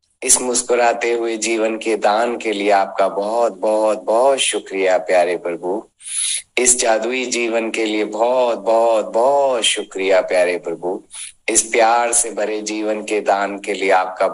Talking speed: 150 wpm